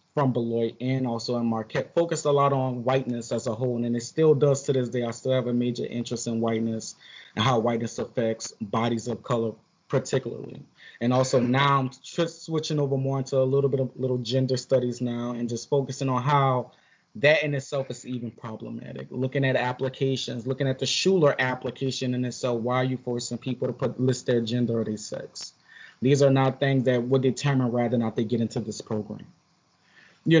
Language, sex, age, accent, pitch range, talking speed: English, male, 20-39, American, 120-140 Hz, 205 wpm